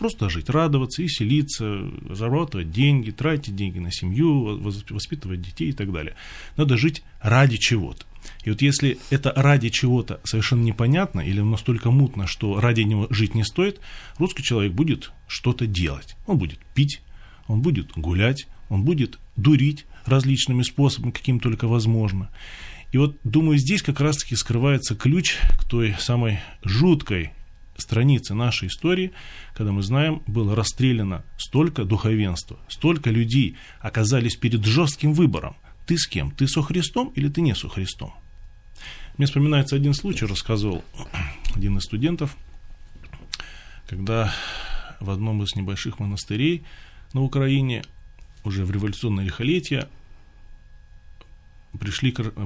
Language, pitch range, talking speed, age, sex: Russian, 100-140 Hz, 135 wpm, 20-39, male